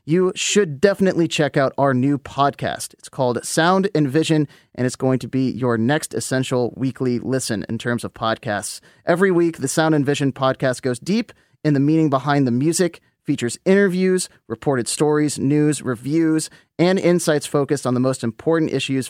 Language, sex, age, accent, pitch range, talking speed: English, male, 30-49, American, 125-155 Hz, 170 wpm